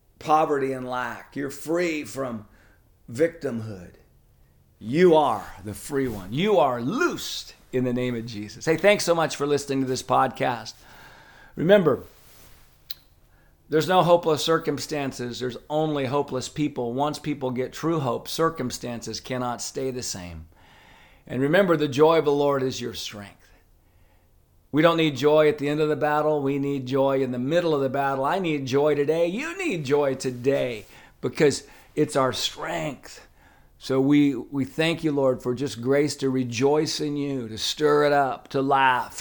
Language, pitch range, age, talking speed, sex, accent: English, 120-150 Hz, 50-69, 165 wpm, male, American